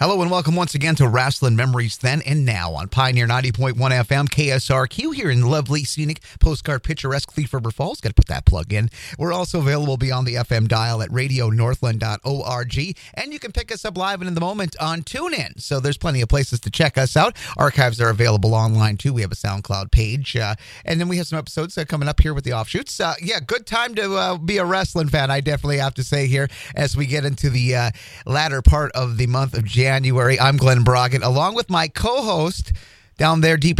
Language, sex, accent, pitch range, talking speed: English, male, American, 125-160 Hz, 225 wpm